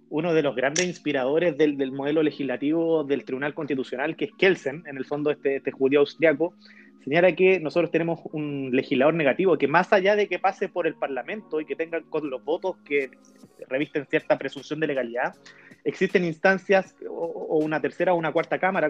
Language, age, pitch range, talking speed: Spanish, 30-49, 145-185 Hz, 190 wpm